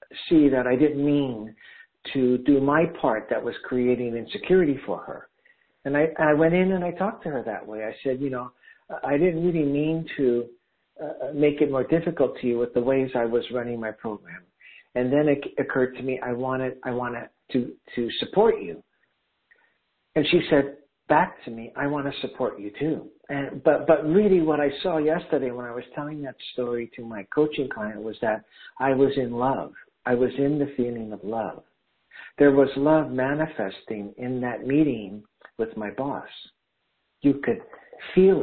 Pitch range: 120-155 Hz